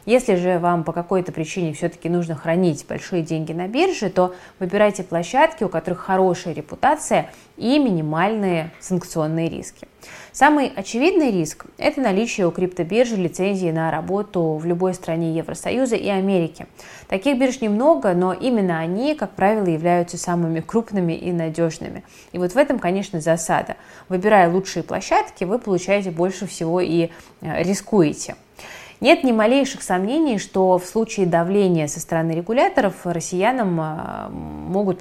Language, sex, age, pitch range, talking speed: Russian, female, 20-39, 170-210 Hz, 140 wpm